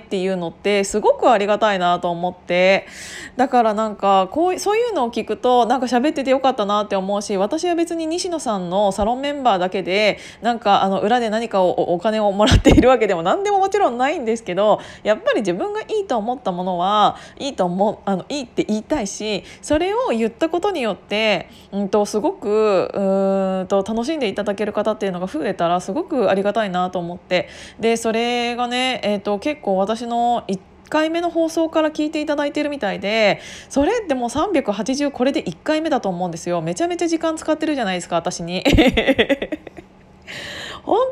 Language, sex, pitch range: Japanese, female, 195-300 Hz